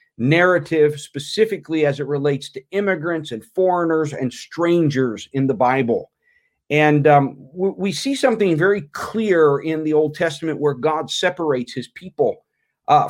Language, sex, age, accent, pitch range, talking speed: English, male, 40-59, American, 145-200 Hz, 140 wpm